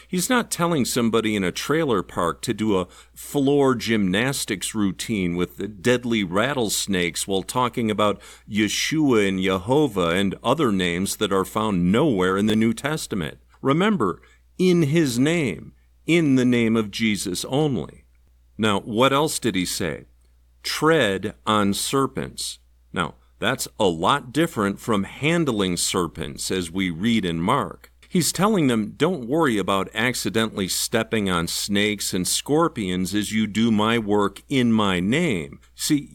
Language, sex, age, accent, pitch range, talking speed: English, male, 50-69, American, 95-135 Hz, 145 wpm